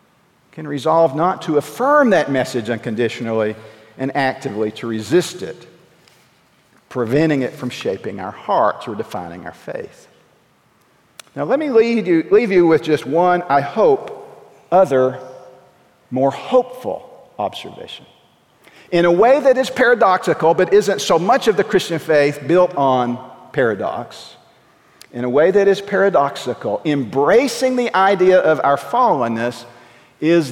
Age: 50-69